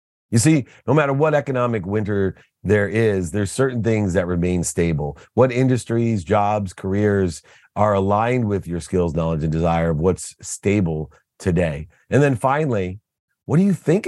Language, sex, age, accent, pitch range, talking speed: English, male, 40-59, American, 90-125 Hz, 160 wpm